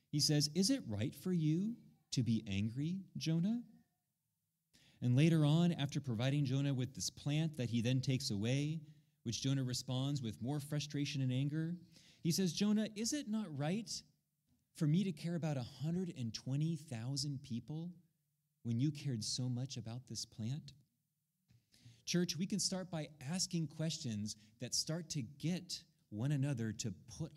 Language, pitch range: English, 105-150 Hz